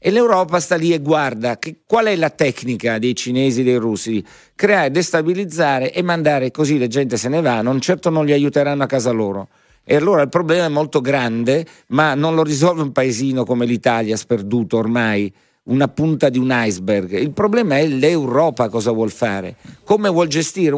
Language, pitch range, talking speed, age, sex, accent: Italian, 120-160 Hz, 190 wpm, 50-69, male, native